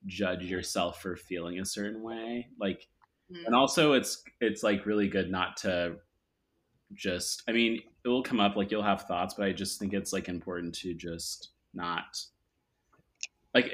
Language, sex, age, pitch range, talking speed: English, male, 20-39, 90-105 Hz, 170 wpm